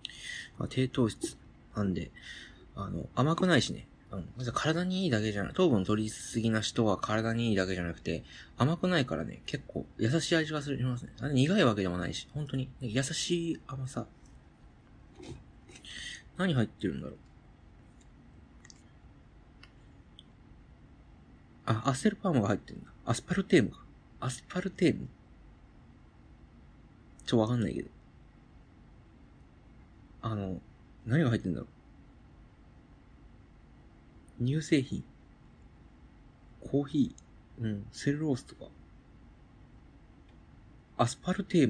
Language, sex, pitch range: Japanese, male, 105-145 Hz